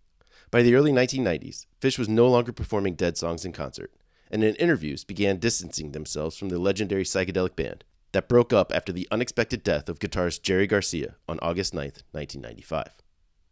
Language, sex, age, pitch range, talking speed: English, male, 30-49, 80-115 Hz, 175 wpm